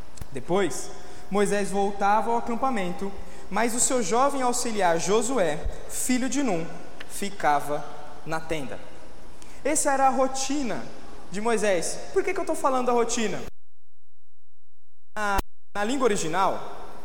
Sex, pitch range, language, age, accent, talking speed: male, 195-265 Hz, Portuguese, 20-39, Brazilian, 125 wpm